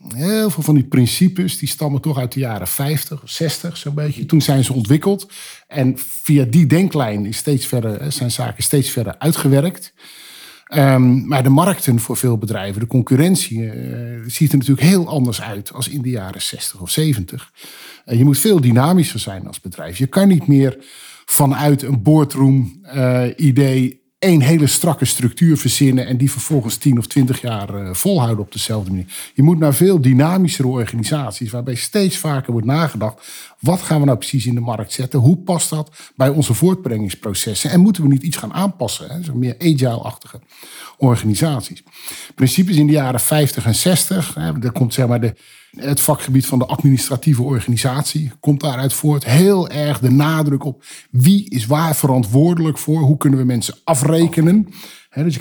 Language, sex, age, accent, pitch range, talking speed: Dutch, male, 50-69, Dutch, 125-155 Hz, 175 wpm